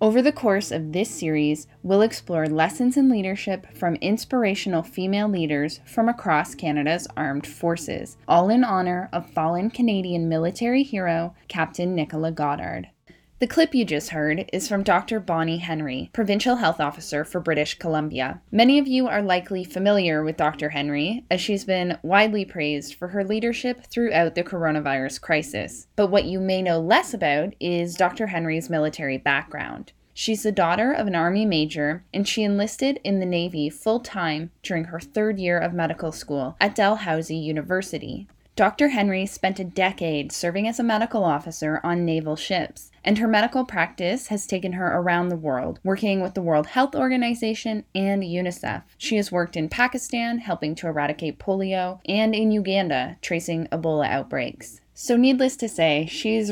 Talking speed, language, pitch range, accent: 165 wpm, English, 160-210 Hz, American